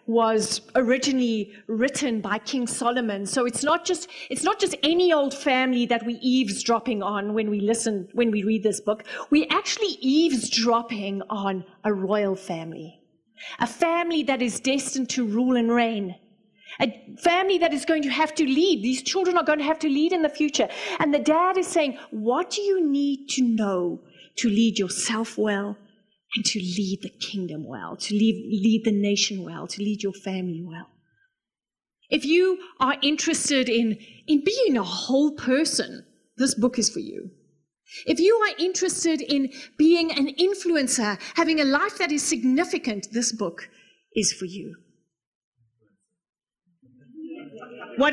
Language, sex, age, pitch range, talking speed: English, female, 30-49, 210-305 Hz, 165 wpm